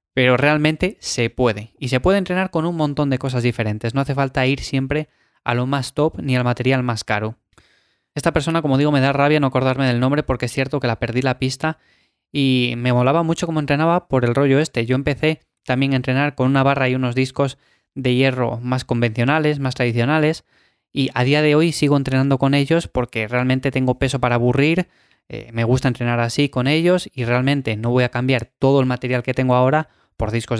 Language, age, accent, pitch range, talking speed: Spanish, 20-39, Spanish, 125-150 Hz, 215 wpm